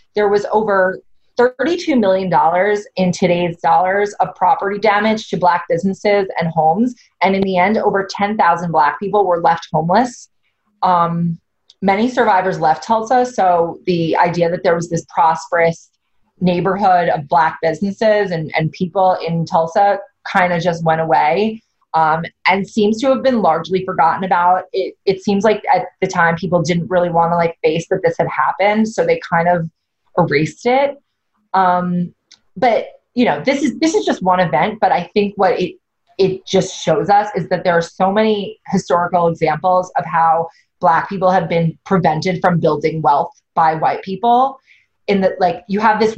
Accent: American